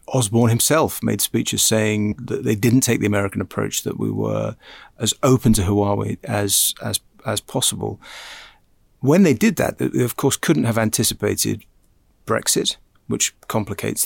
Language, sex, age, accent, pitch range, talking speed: English, male, 40-59, British, 100-120 Hz, 155 wpm